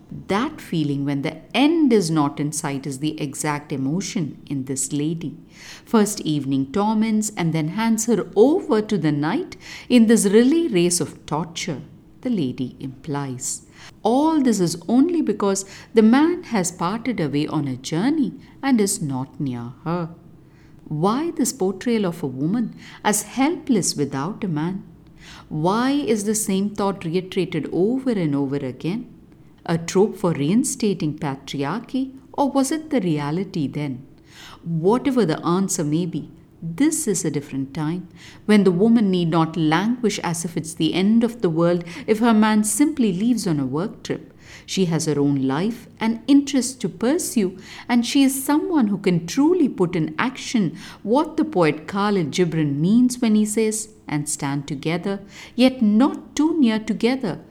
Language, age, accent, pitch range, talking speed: English, 50-69, Indian, 155-230 Hz, 160 wpm